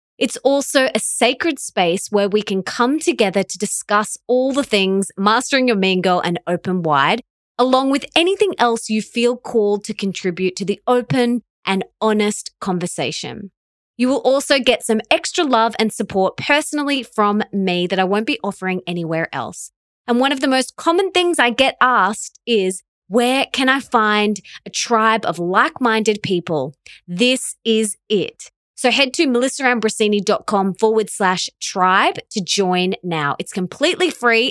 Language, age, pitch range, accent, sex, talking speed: English, 20-39, 190-250 Hz, Australian, female, 160 wpm